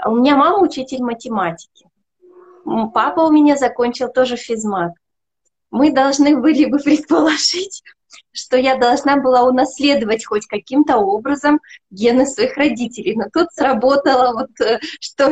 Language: Russian